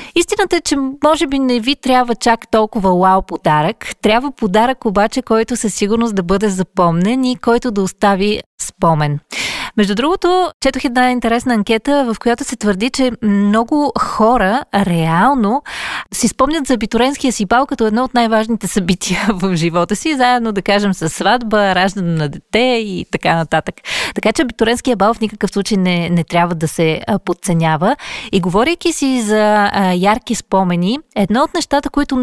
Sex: female